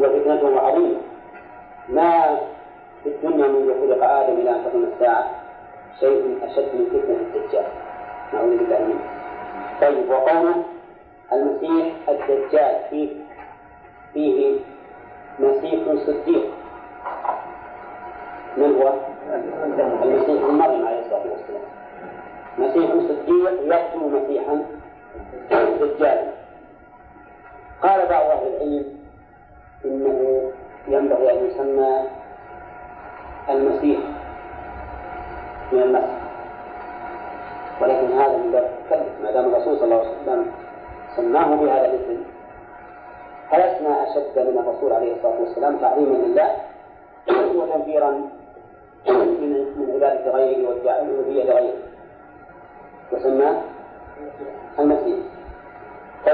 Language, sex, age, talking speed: Arabic, male, 40-59, 90 wpm